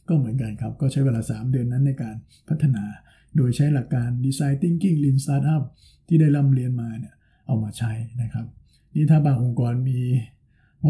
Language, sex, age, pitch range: Thai, male, 60-79, 120-145 Hz